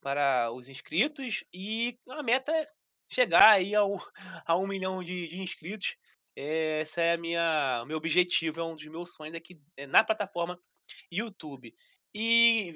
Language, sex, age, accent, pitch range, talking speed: Portuguese, male, 20-39, Brazilian, 170-235 Hz, 170 wpm